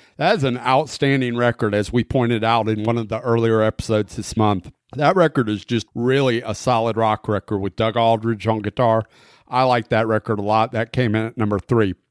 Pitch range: 105-130 Hz